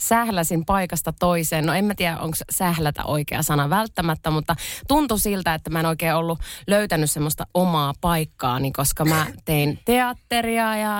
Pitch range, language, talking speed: 145-180 Hz, Finnish, 160 wpm